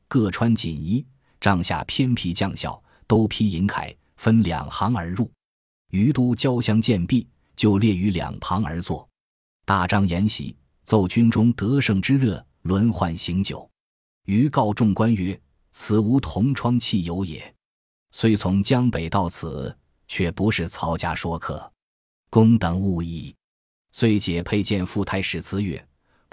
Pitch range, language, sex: 85-115 Hz, Chinese, male